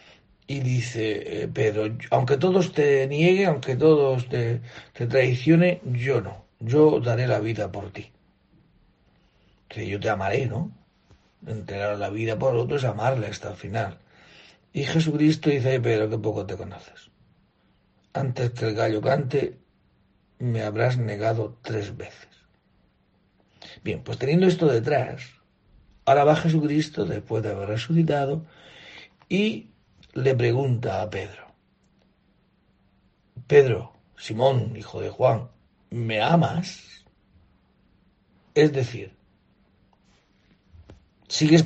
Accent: Spanish